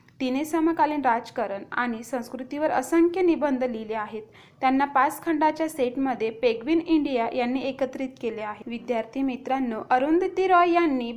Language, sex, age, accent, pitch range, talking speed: Marathi, female, 20-39, native, 235-300 Hz, 130 wpm